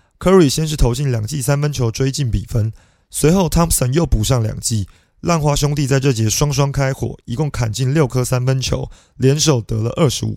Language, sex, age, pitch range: Chinese, male, 30-49, 115-145 Hz